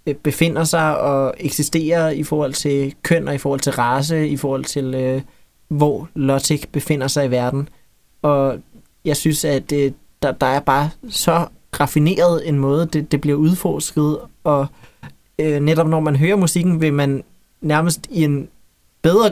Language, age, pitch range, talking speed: Danish, 20-39, 145-170 Hz, 165 wpm